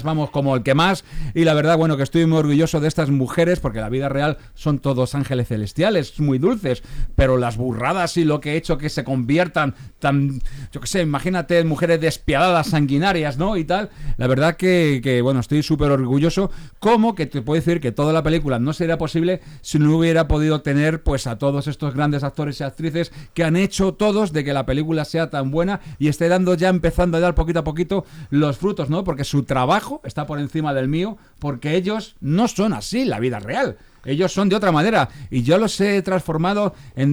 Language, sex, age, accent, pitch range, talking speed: Spanish, male, 40-59, Spanish, 140-180 Hz, 215 wpm